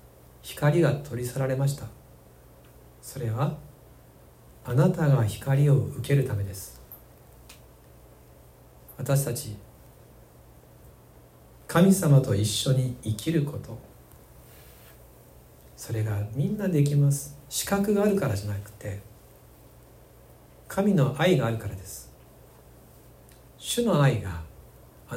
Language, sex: Japanese, male